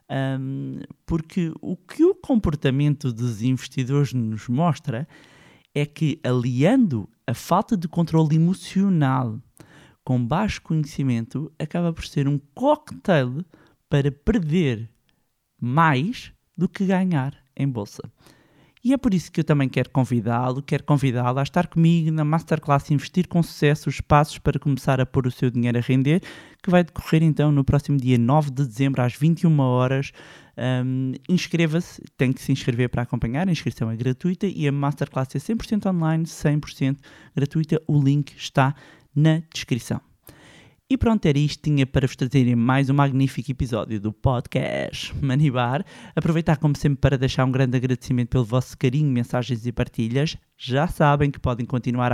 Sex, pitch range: male, 130-160 Hz